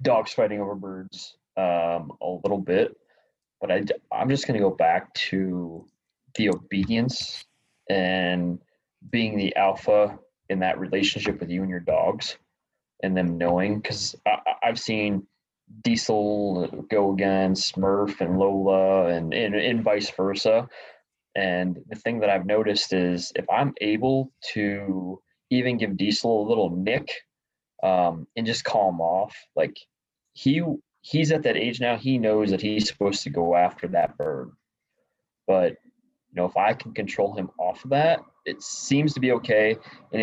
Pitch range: 95-125 Hz